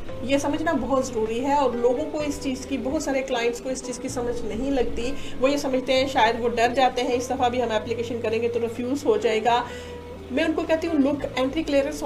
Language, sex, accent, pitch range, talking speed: English, female, Indian, 235-275 Hz, 230 wpm